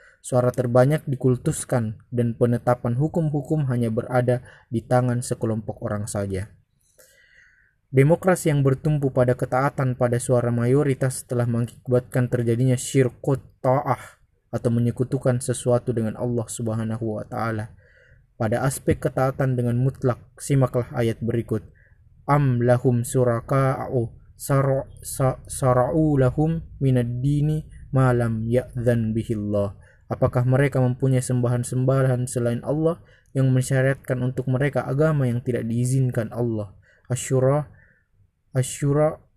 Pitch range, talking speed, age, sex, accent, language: 120-135 Hz, 105 wpm, 20-39, male, native, Indonesian